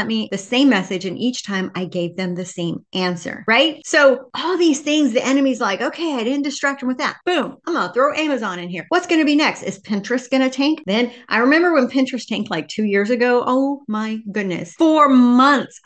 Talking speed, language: 230 wpm, English